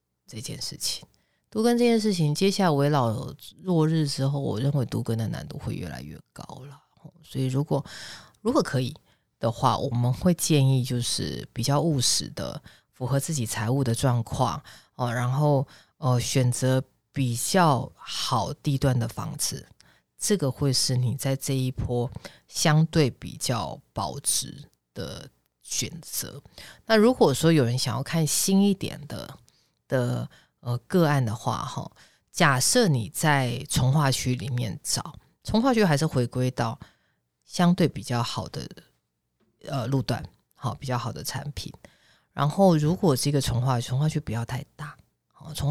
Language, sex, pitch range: Chinese, female, 120-155 Hz